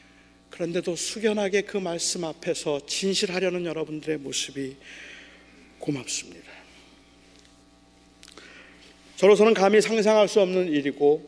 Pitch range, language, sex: 130-180 Hz, Korean, male